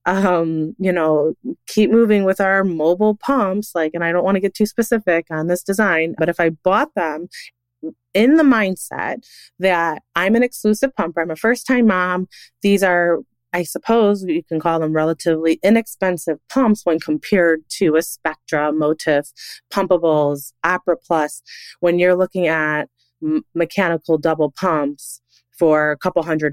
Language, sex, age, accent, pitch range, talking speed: English, female, 20-39, American, 150-185 Hz, 155 wpm